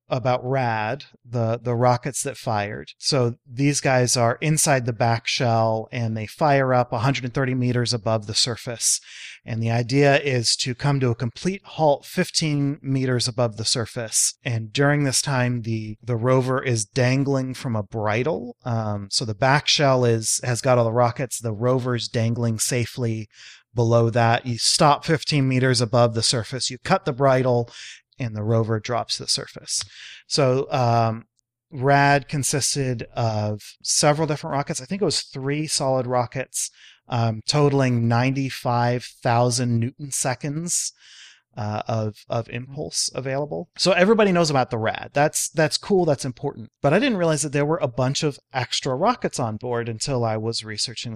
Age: 30-49